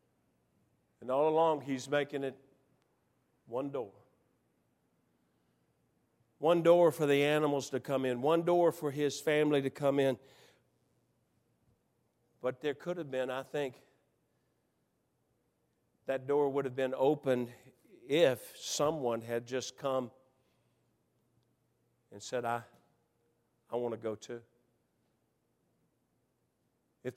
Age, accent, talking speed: 50-69, American, 115 wpm